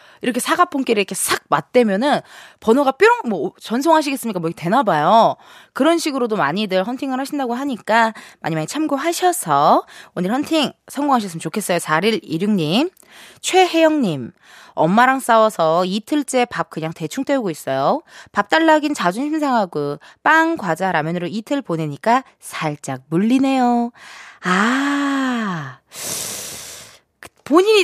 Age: 20-39